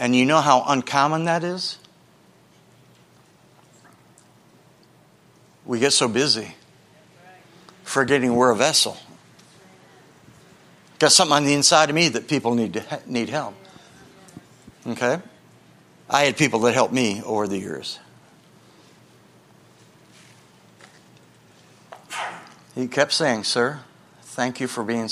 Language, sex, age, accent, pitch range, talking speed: English, male, 60-79, American, 125-165 Hz, 110 wpm